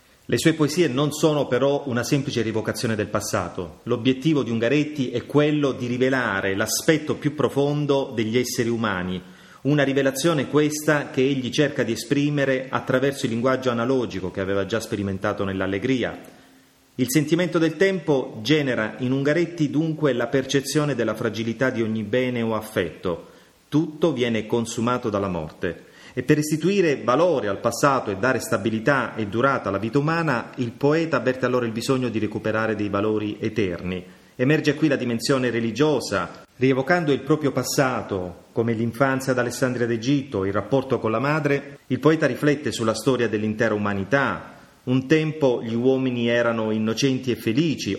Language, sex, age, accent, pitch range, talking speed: Italian, male, 30-49, native, 110-140 Hz, 155 wpm